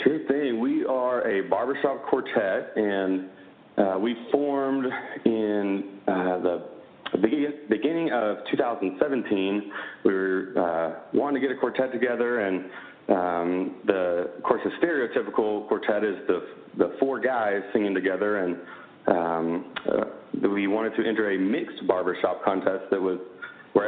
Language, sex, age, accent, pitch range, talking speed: English, male, 30-49, American, 95-120 Hz, 140 wpm